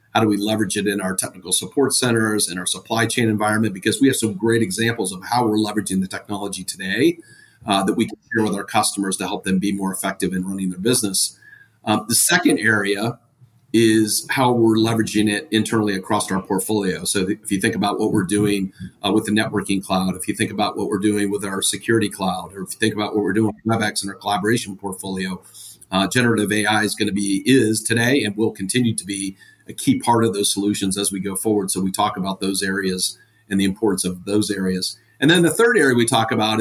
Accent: American